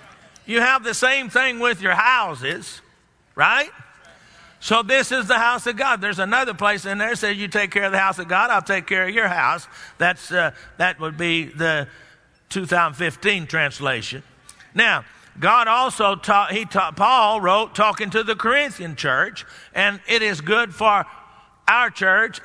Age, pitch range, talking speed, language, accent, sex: 50-69, 160-220 Hz, 175 wpm, English, American, male